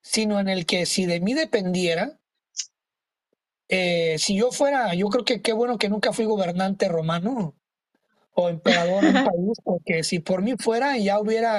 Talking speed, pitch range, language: 175 wpm, 175-220 Hz, Spanish